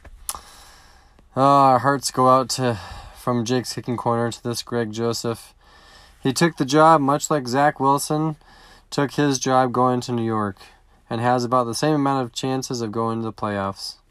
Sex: male